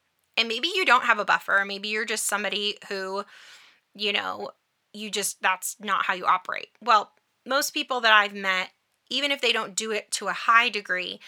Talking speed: 195 wpm